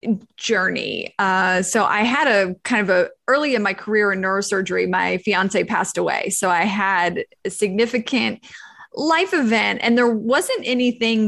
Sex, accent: female, American